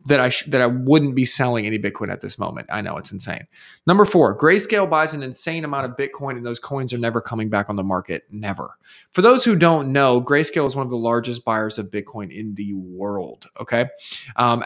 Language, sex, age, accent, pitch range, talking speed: English, male, 20-39, American, 115-160 Hz, 230 wpm